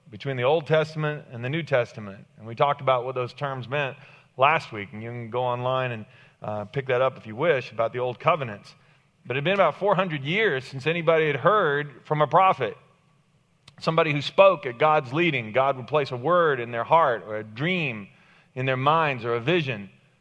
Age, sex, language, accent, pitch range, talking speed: 40-59, male, English, American, 120-155 Hz, 215 wpm